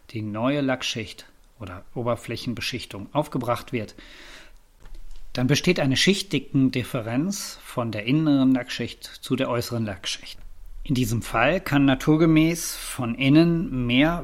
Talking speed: 120 wpm